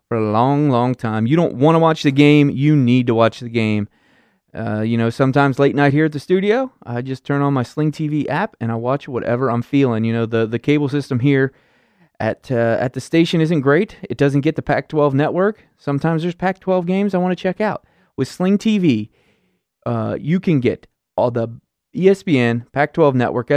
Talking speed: 210 wpm